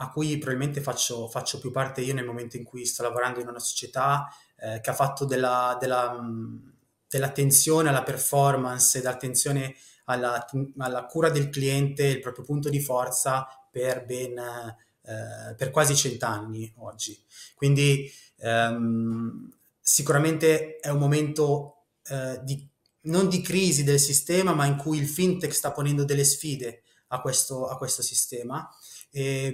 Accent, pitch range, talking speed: native, 125-150 Hz, 150 wpm